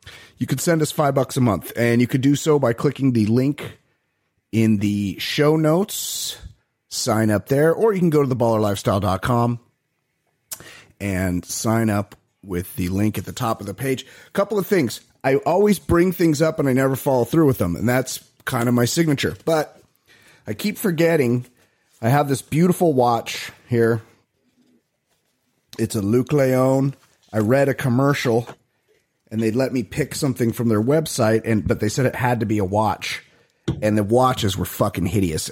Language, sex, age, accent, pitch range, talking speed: English, male, 30-49, American, 110-145 Hz, 185 wpm